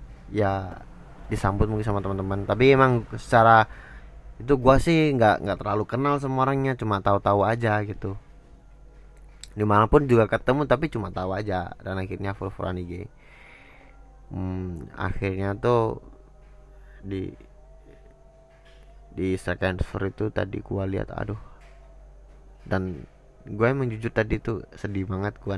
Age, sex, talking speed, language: 20-39, male, 120 wpm, Indonesian